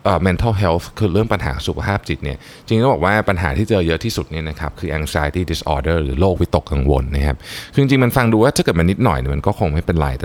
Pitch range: 80-110 Hz